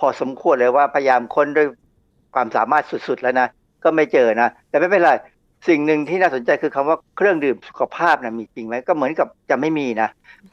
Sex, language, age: male, Thai, 60-79